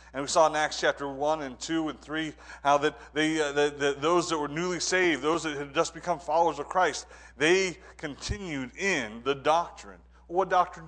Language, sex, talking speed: English, male, 205 wpm